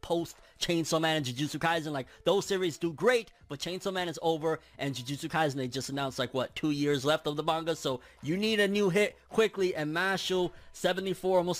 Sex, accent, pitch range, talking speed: male, American, 145-185 Hz, 210 wpm